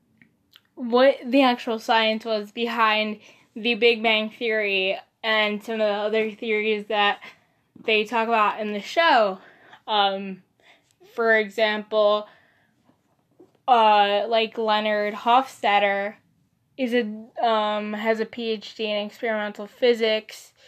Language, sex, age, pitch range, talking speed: English, female, 10-29, 210-240 Hz, 115 wpm